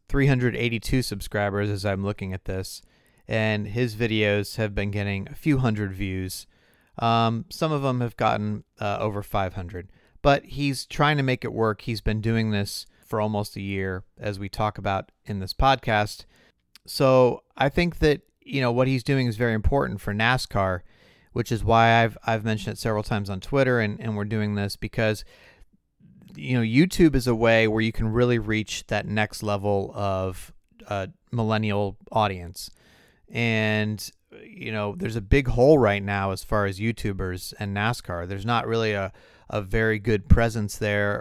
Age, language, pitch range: 30-49, English, 100-120 Hz